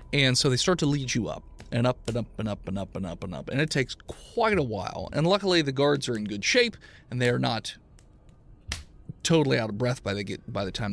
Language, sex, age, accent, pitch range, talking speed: English, male, 30-49, American, 110-160 Hz, 260 wpm